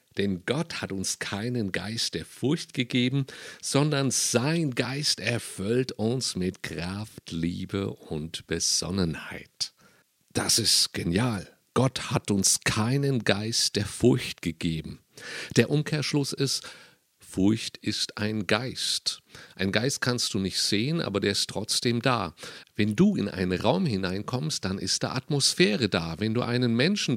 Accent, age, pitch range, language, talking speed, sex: German, 50-69, 95-135 Hz, German, 140 wpm, male